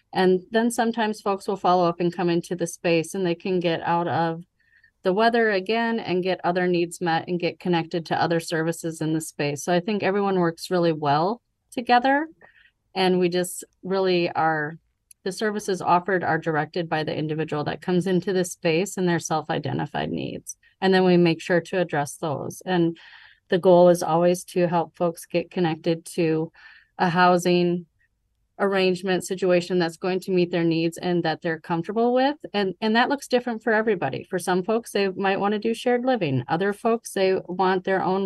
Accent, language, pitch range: American, English, 165-195 Hz